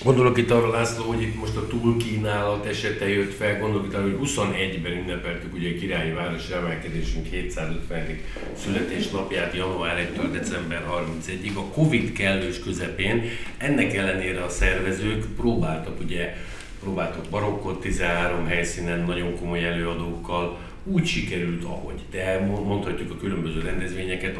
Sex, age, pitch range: male, 60-79, 85-100 Hz